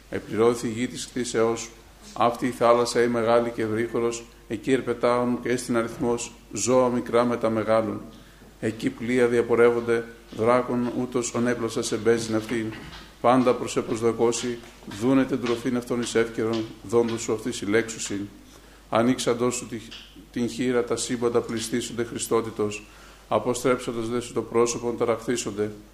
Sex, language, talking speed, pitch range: male, Greek, 130 wpm, 115-120 Hz